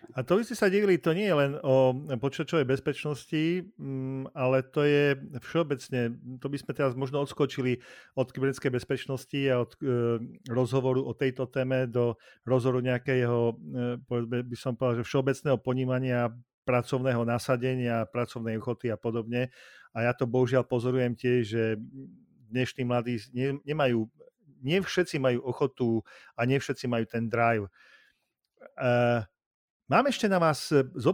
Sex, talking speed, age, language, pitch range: male, 135 wpm, 40-59, Slovak, 120-140 Hz